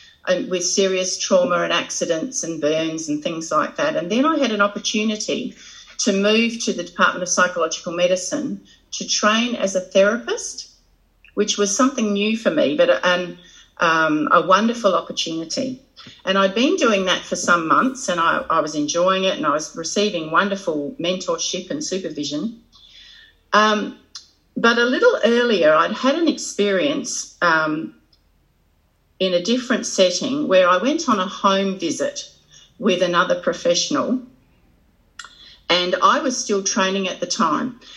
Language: English